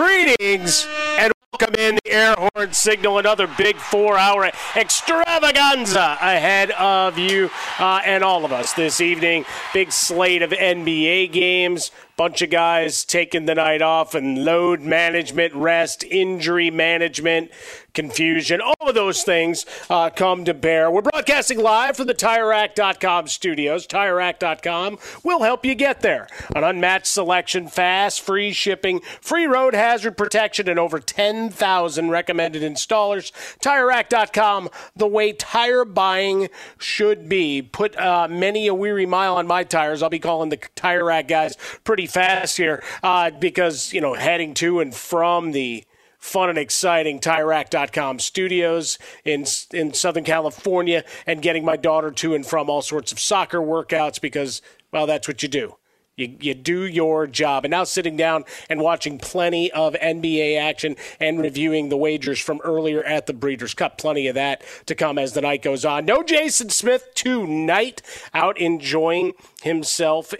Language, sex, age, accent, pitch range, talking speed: English, male, 30-49, American, 160-200 Hz, 155 wpm